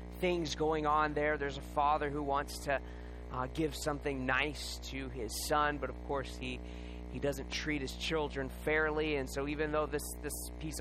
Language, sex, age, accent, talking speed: English, male, 20-39, American, 190 wpm